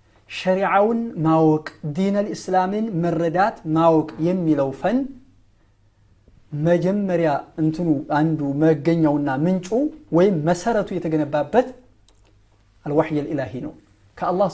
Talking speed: 80 wpm